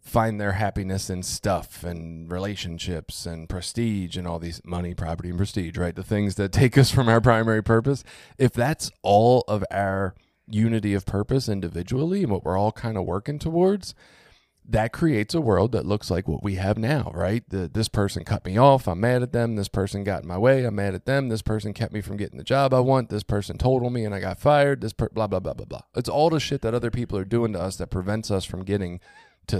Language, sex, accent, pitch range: English, male, American, 90-115 Hz